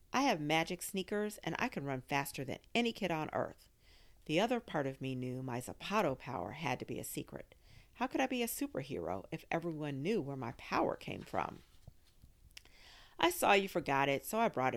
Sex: female